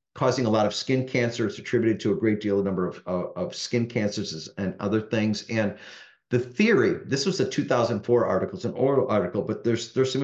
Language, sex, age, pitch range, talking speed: English, male, 50-69, 105-135 Hz, 225 wpm